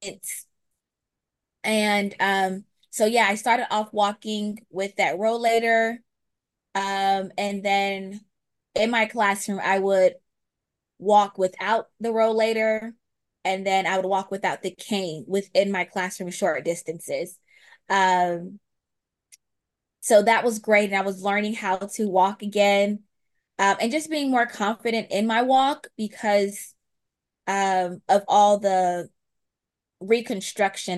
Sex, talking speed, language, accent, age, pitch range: female, 125 wpm, English, American, 20-39, 190-225 Hz